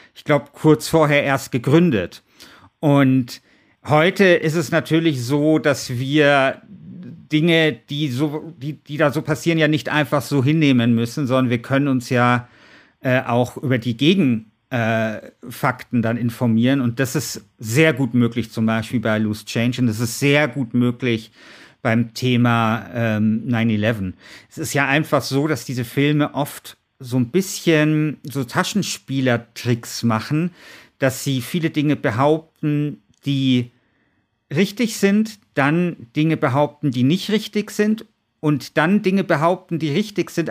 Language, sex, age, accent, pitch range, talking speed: German, male, 50-69, German, 125-155 Hz, 145 wpm